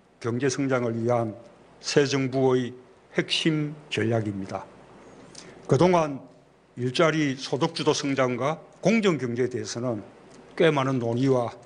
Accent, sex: native, male